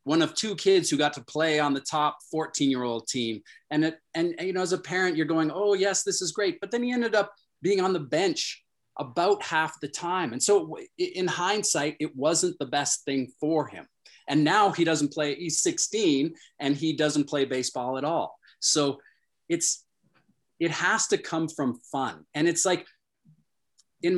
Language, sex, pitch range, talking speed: English, male, 135-180 Hz, 190 wpm